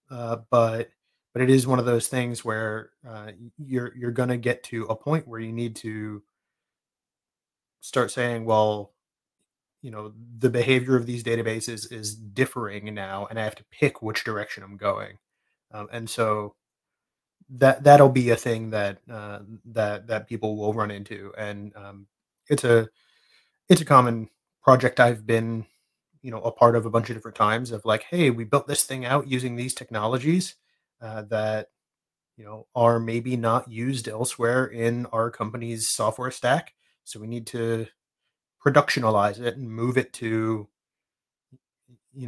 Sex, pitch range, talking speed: male, 110-125 Hz, 165 wpm